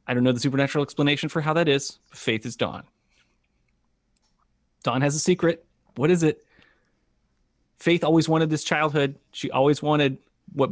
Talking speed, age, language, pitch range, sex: 170 wpm, 30-49, English, 115-145 Hz, male